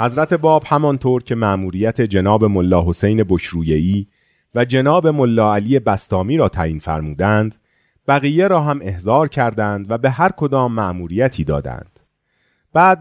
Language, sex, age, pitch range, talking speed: Persian, male, 30-49, 100-145 Hz, 135 wpm